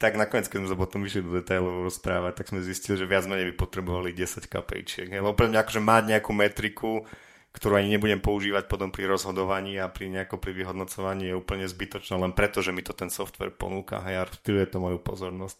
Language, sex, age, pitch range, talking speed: Slovak, male, 30-49, 90-100 Hz, 210 wpm